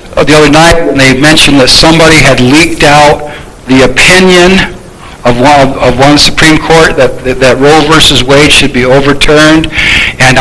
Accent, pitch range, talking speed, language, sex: American, 130-155 Hz, 180 wpm, English, male